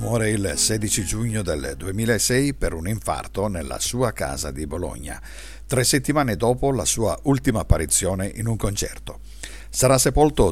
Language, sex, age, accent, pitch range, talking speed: Italian, male, 60-79, native, 90-130 Hz, 150 wpm